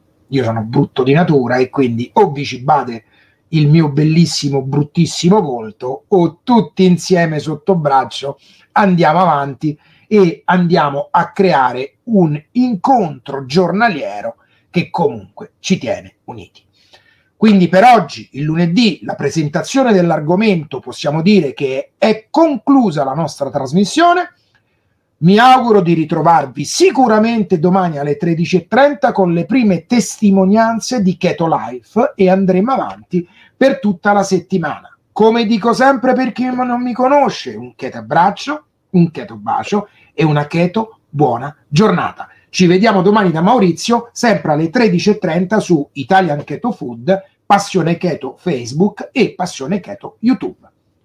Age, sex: 30-49, male